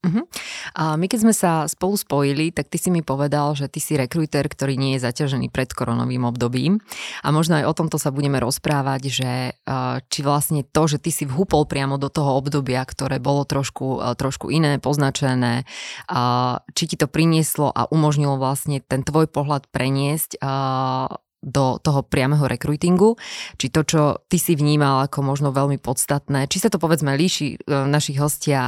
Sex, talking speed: female, 170 wpm